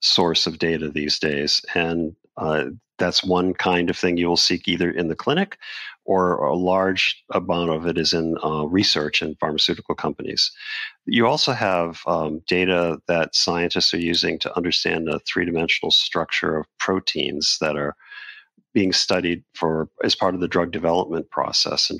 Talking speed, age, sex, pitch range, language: 165 wpm, 40-59, male, 80-90 Hz, English